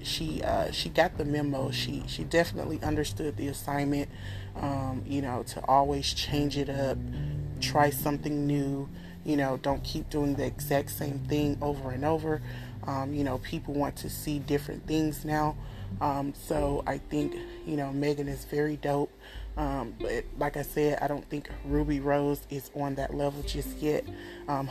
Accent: American